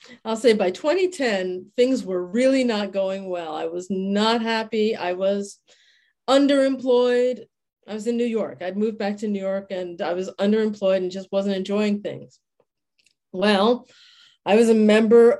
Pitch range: 195-235 Hz